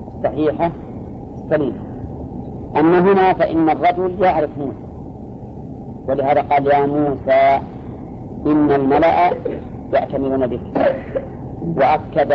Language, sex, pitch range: Arabic, female, 135-155 Hz